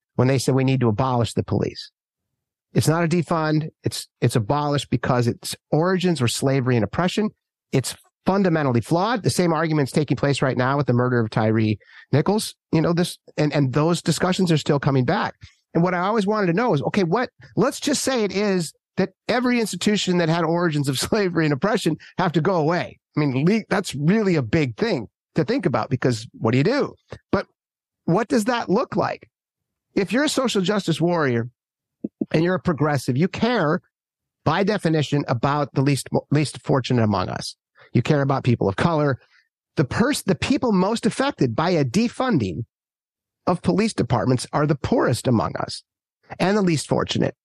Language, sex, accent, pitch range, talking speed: English, male, American, 140-200 Hz, 185 wpm